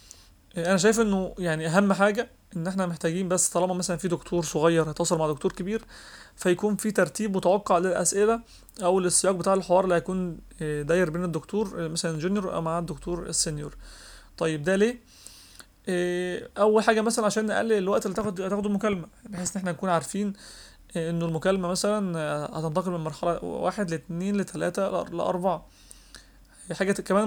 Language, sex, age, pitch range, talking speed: Arabic, male, 30-49, 170-205 Hz, 145 wpm